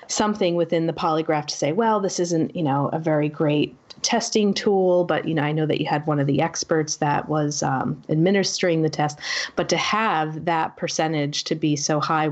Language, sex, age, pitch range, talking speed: English, female, 30-49, 150-175 Hz, 210 wpm